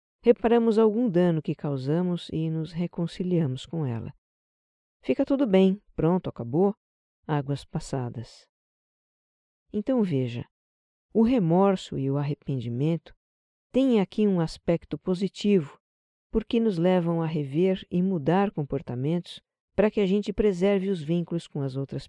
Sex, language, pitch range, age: female, Portuguese, 145-195 Hz, 50-69